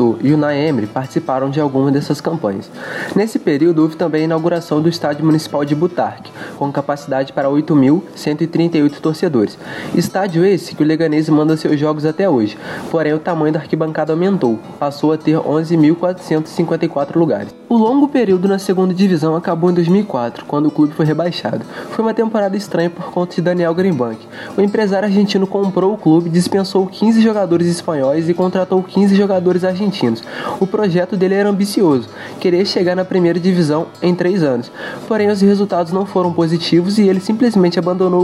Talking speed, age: 165 wpm, 20-39